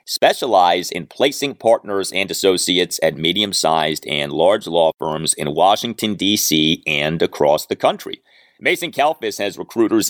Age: 40-59